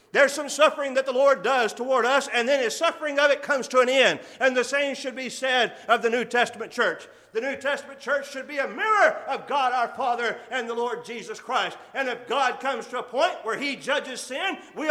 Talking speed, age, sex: 240 wpm, 40-59, male